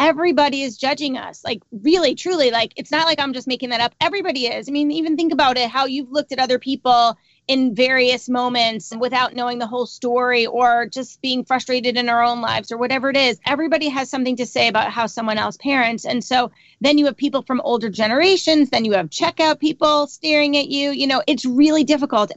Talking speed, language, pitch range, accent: 220 wpm, English, 225-270 Hz, American